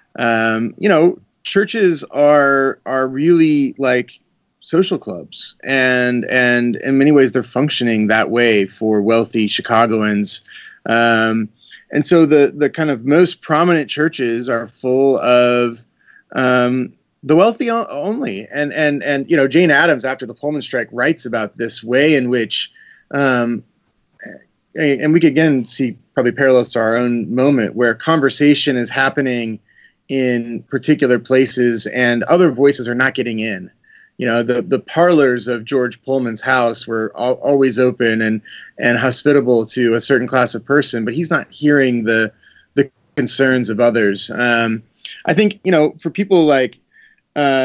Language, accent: English, American